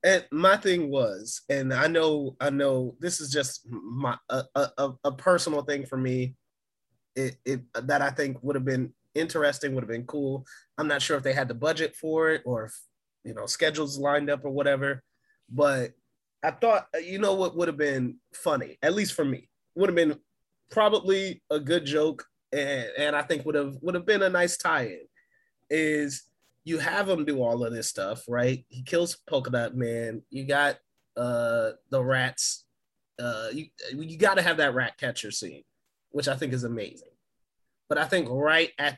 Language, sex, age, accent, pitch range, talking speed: English, male, 20-39, American, 130-170 Hz, 195 wpm